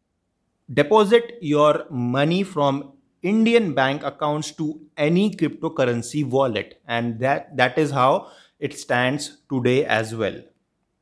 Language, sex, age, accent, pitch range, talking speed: English, male, 30-49, Indian, 130-170 Hz, 115 wpm